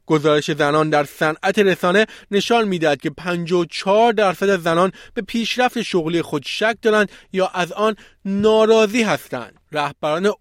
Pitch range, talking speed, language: 150-205 Hz, 140 wpm, Persian